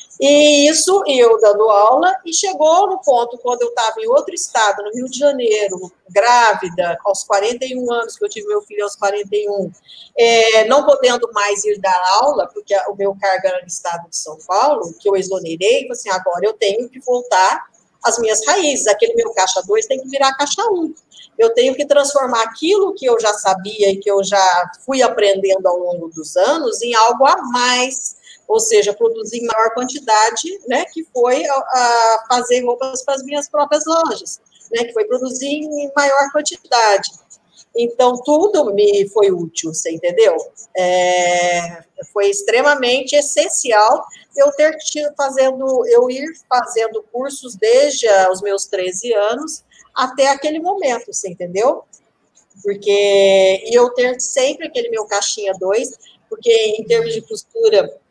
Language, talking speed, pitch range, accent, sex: Portuguese, 160 wpm, 200-295 Hz, Brazilian, female